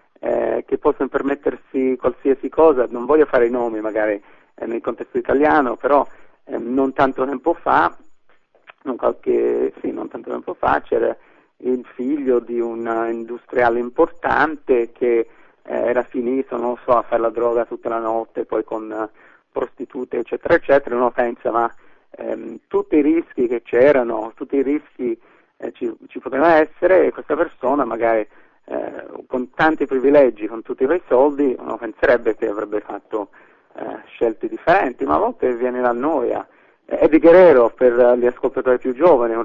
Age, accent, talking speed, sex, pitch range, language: 40-59, native, 165 wpm, male, 115-160 Hz, Italian